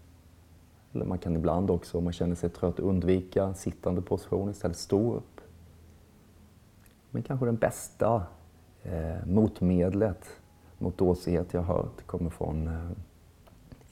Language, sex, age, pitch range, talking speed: Swedish, male, 30-49, 85-105 Hz, 135 wpm